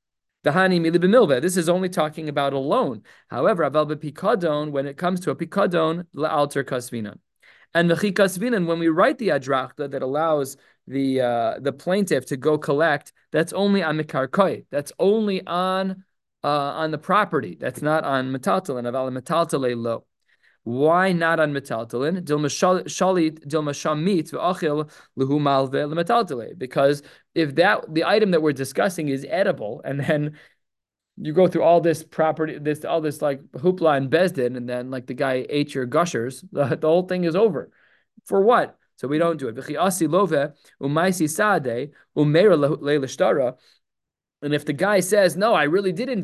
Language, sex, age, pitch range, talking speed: English, male, 20-39, 140-175 Hz, 140 wpm